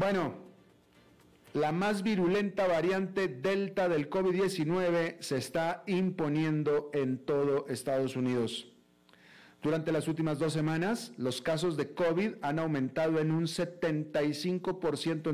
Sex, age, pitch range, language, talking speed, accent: male, 40-59, 135-175 Hz, Spanish, 115 wpm, Mexican